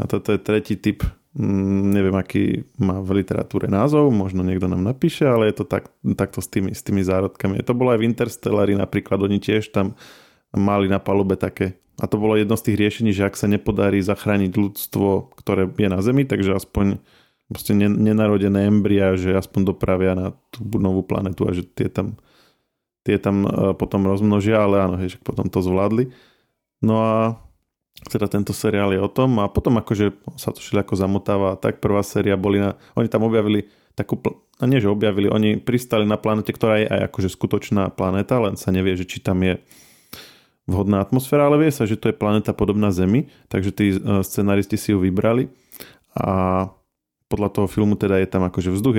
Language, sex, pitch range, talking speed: Slovak, male, 95-110 Hz, 185 wpm